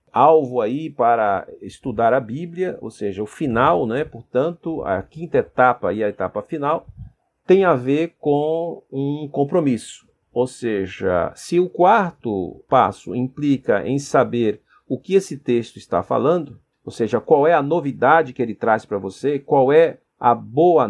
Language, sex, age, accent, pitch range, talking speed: Portuguese, male, 50-69, Brazilian, 120-170 Hz, 160 wpm